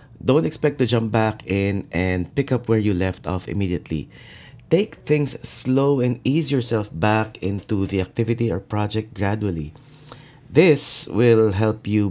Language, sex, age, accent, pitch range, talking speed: English, male, 20-39, Filipino, 105-125 Hz, 155 wpm